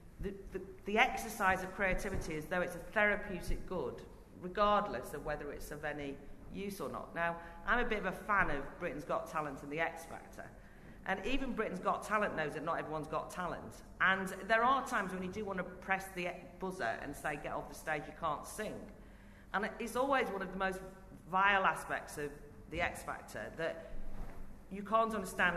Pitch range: 165-200 Hz